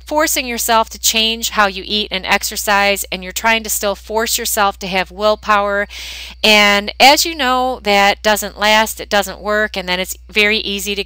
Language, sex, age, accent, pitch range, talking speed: English, female, 30-49, American, 180-225 Hz, 190 wpm